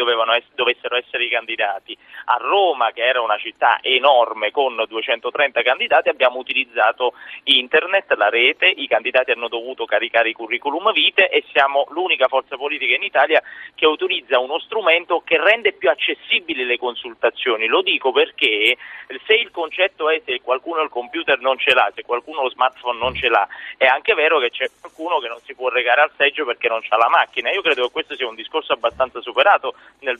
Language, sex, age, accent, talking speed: Italian, male, 30-49, native, 190 wpm